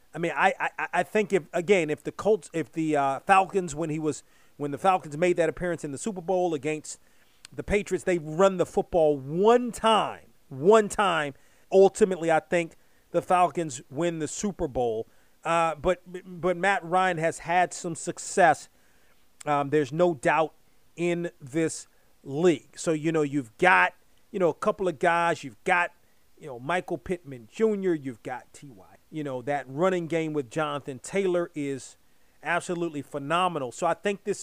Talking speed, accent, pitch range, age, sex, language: 175 wpm, American, 155-195 Hz, 40-59, male, English